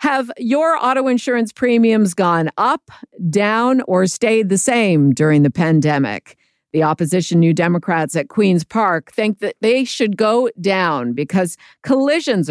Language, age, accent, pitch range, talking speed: English, 50-69, American, 165-220 Hz, 145 wpm